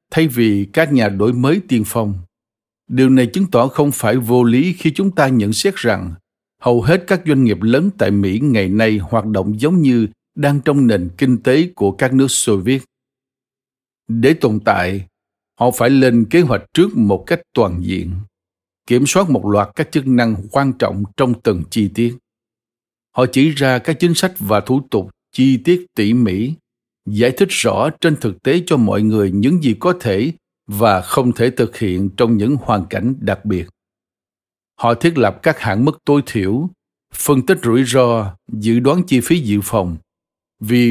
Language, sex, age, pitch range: Vietnamese, male, 60-79, 105-140 Hz